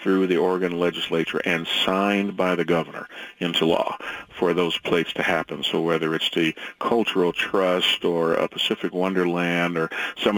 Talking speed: 160 wpm